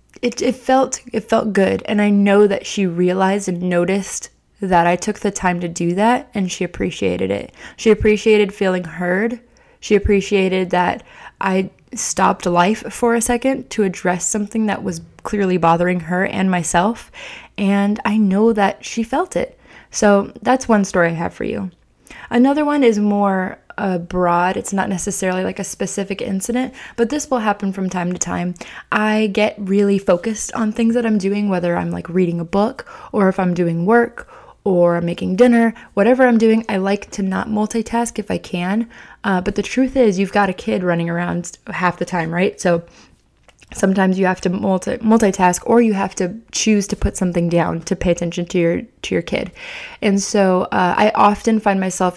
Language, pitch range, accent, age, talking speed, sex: English, 180-220 Hz, American, 20-39, 190 wpm, female